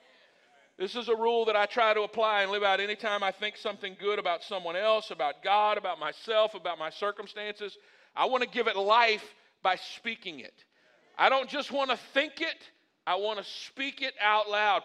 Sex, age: male, 50-69